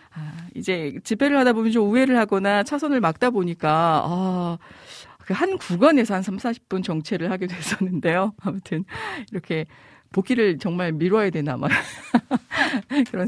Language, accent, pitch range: Korean, native, 170-250 Hz